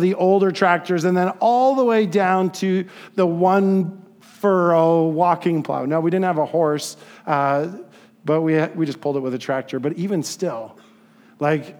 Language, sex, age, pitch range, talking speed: English, male, 40-59, 155-215 Hz, 180 wpm